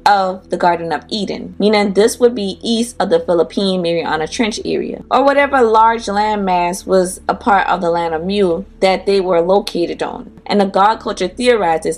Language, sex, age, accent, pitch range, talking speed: English, female, 20-39, American, 175-230 Hz, 190 wpm